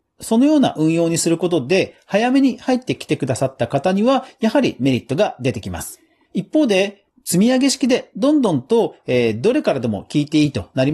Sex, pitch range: male, 135-225 Hz